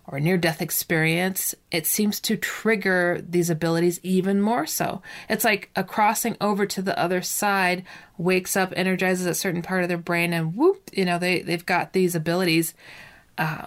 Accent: American